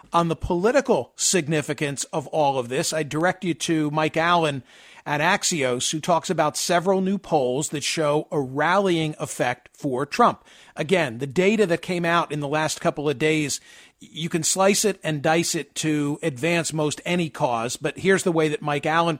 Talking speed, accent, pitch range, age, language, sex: 190 wpm, American, 150-190 Hz, 50-69, English, male